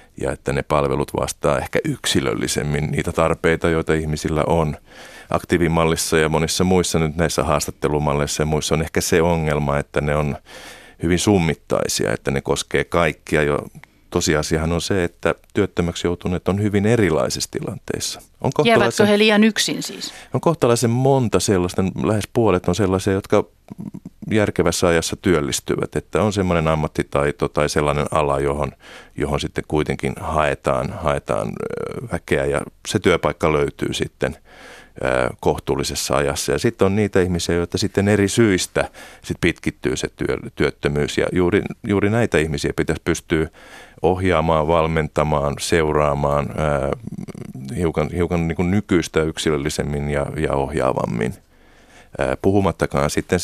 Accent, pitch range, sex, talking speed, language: native, 75-90 Hz, male, 130 wpm, Finnish